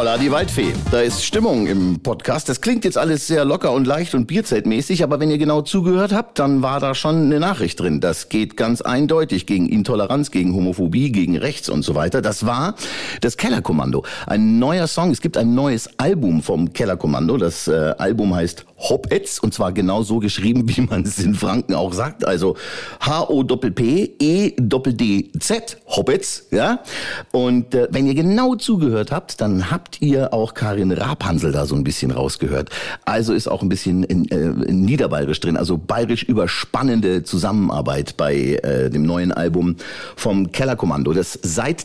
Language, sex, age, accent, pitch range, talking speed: German, male, 50-69, German, 95-155 Hz, 165 wpm